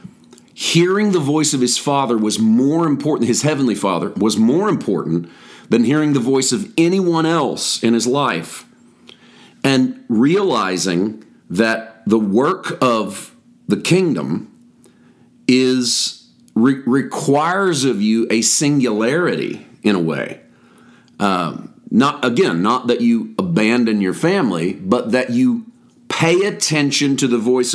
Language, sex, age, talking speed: English, male, 40-59, 130 wpm